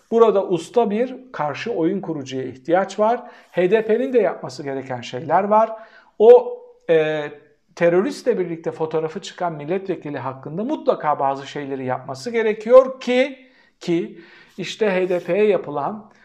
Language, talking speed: Turkish, 120 wpm